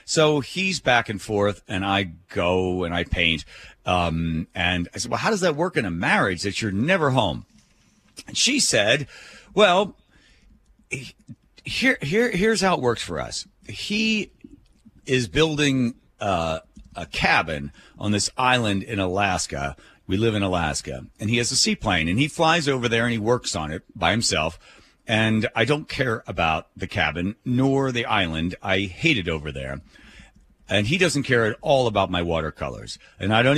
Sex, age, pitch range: male, 40-59, 90-125 Hz